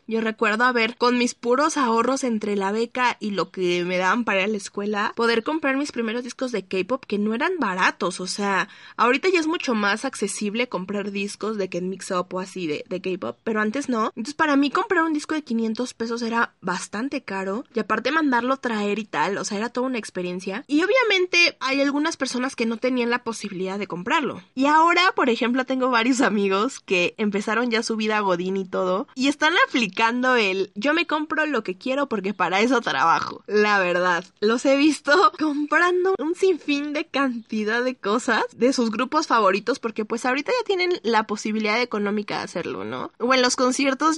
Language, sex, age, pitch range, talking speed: Spanish, female, 20-39, 200-260 Hz, 200 wpm